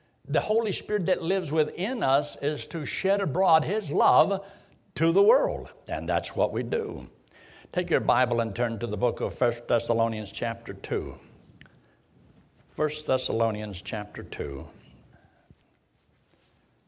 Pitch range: 105-145 Hz